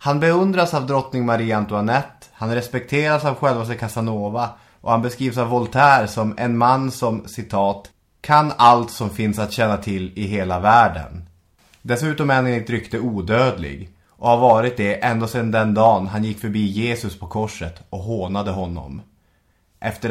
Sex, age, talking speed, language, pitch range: male, 20-39, 165 wpm, English, 100-125 Hz